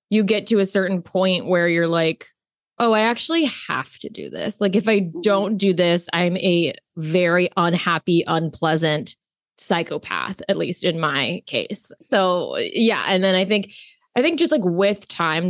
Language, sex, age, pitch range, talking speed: English, female, 20-39, 170-200 Hz, 175 wpm